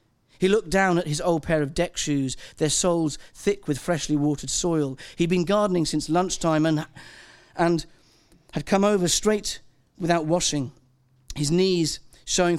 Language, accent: English, British